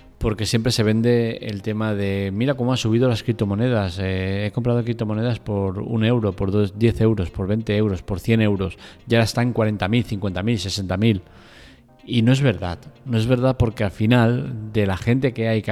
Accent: Spanish